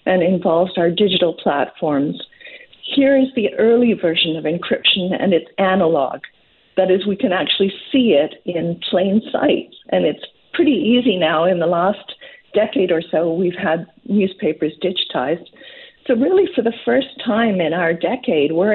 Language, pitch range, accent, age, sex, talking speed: English, 170-230 Hz, American, 50-69, female, 160 wpm